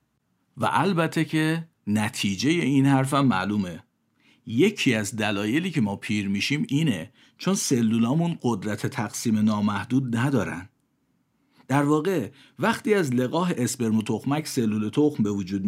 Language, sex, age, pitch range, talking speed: Persian, male, 50-69, 105-135 Hz, 125 wpm